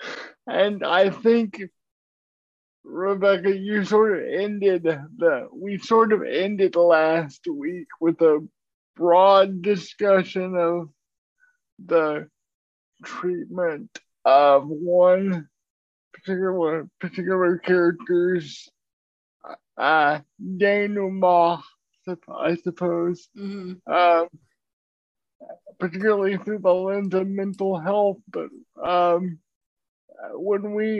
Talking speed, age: 85 wpm, 50-69